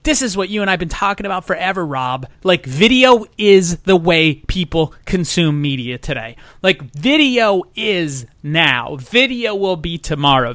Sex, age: male, 30-49